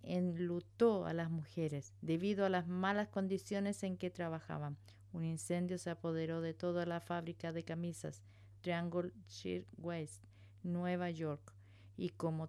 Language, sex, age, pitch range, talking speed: English, female, 50-69, 155-185 Hz, 135 wpm